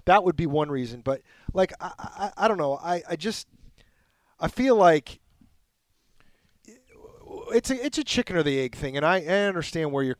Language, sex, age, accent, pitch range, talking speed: English, male, 30-49, American, 150-200 Hz, 195 wpm